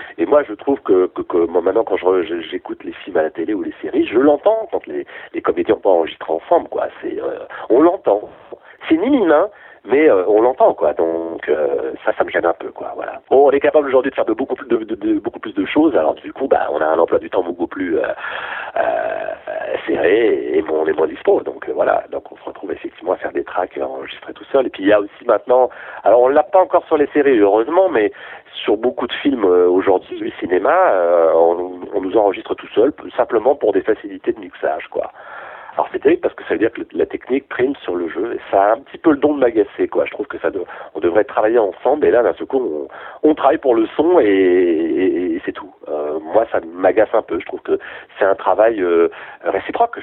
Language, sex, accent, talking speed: French, male, French, 255 wpm